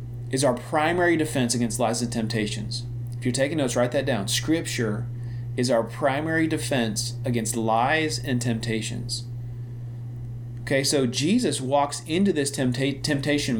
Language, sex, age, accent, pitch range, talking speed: English, male, 40-59, American, 120-150 Hz, 135 wpm